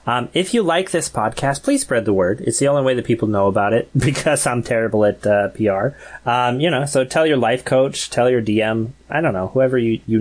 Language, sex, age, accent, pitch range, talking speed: English, male, 30-49, American, 110-145 Hz, 245 wpm